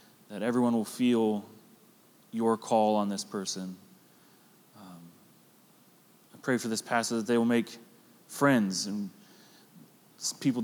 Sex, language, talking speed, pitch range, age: male, English, 125 wpm, 105-120 Hz, 30-49